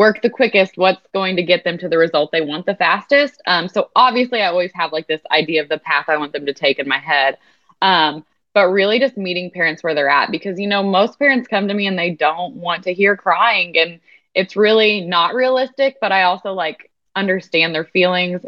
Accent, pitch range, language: American, 155-190 Hz, English